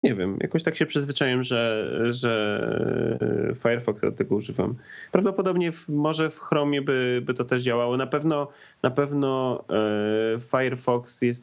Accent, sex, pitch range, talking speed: native, male, 120-145 Hz, 145 wpm